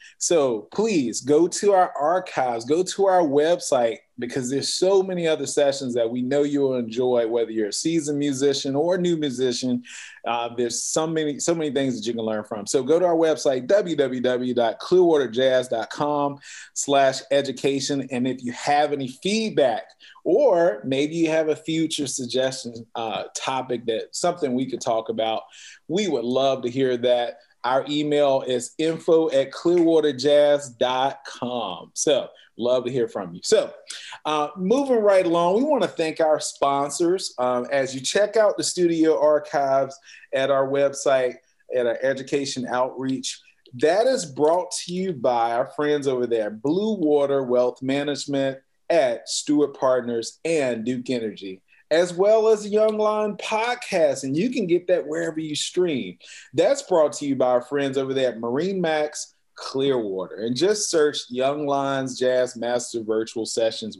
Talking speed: 160 wpm